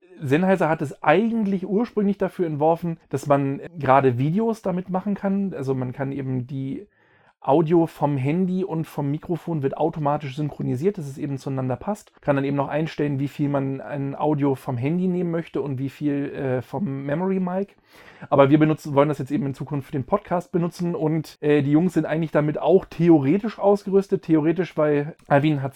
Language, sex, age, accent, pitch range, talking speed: German, male, 40-59, German, 140-170 Hz, 185 wpm